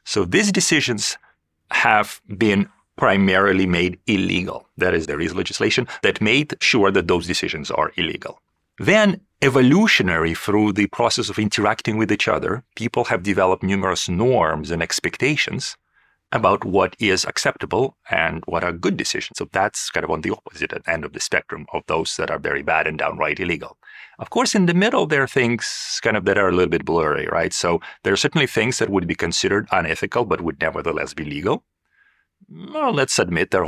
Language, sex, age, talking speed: English, male, 40-59, 185 wpm